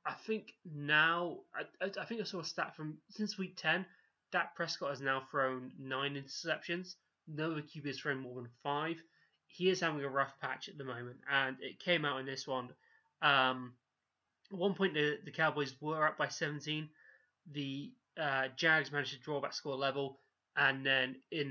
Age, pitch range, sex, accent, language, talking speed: 20-39, 130-160 Hz, male, British, English, 190 wpm